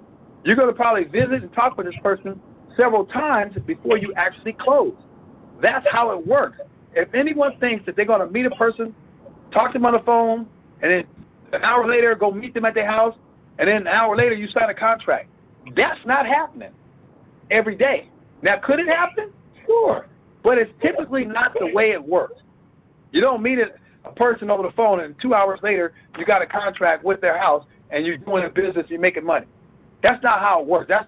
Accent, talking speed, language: American, 210 wpm, English